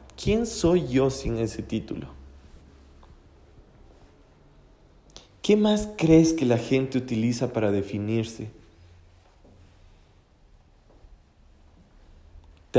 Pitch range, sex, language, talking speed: 95-130 Hz, male, Spanish, 75 wpm